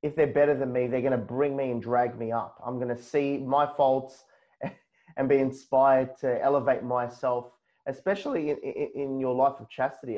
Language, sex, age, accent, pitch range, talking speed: English, male, 30-49, Australian, 120-135 Hz, 185 wpm